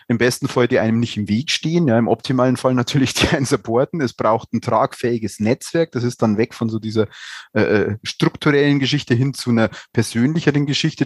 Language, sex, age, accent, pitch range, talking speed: German, male, 30-49, Austrian, 110-130 Hz, 200 wpm